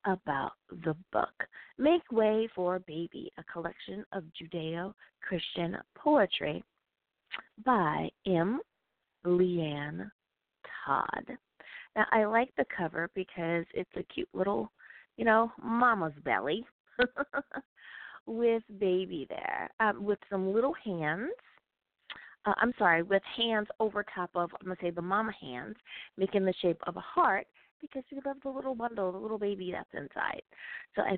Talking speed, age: 135 wpm, 30-49